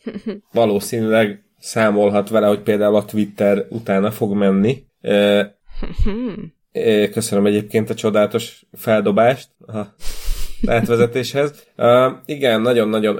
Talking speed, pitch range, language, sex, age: 80 wpm, 100-110 Hz, Hungarian, male, 30-49